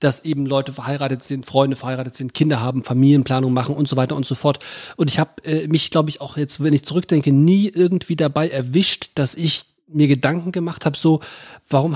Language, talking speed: German, 205 wpm